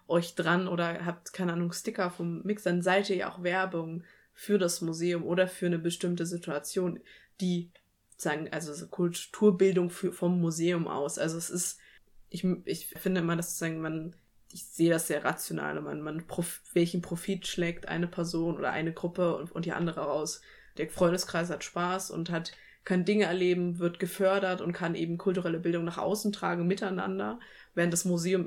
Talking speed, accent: 180 wpm, German